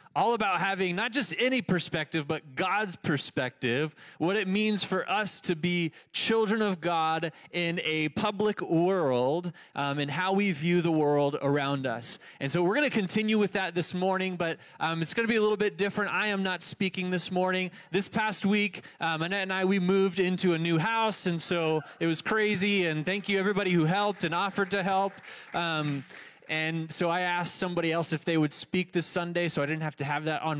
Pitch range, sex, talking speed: 160-200 Hz, male, 210 wpm